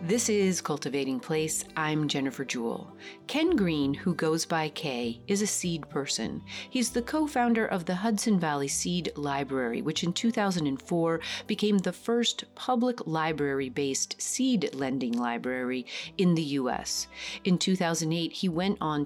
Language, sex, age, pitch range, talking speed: English, female, 40-59, 145-200 Hz, 150 wpm